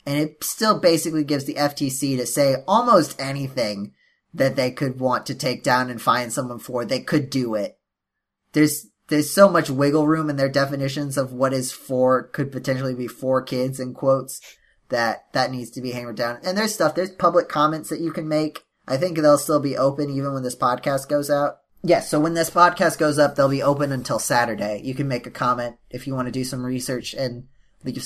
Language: English